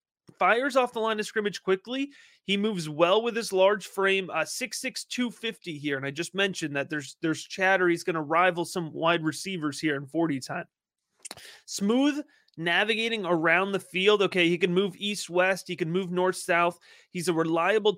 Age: 30-49